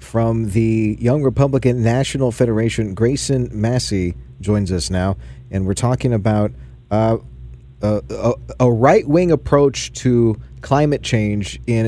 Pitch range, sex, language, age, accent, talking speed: 105-140 Hz, male, English, 40-59, American, 120 wpm